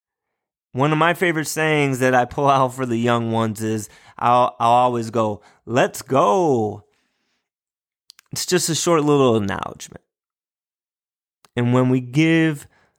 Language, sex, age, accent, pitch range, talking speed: English, male, 30-49, American, 115-150 Hz, 140 wpm